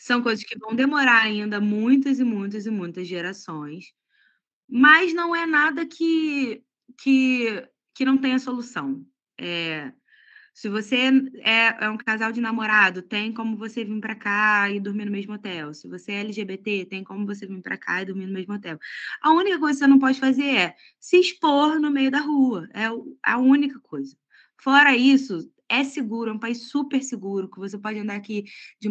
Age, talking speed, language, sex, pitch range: 20-39, 190 wpm, Portuguese, female, 205-275 Hz